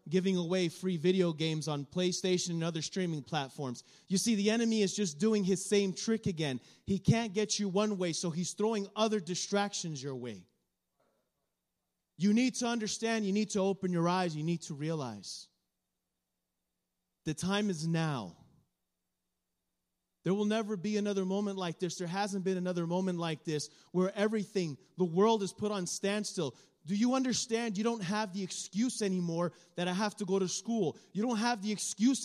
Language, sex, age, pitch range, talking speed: Spanish, male, 30-49, 170-210 Hz, 180 wpm